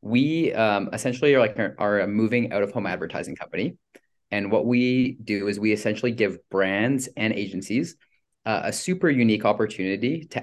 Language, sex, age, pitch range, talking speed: English, male, 20-39, 105-125 Hz, 155 wpm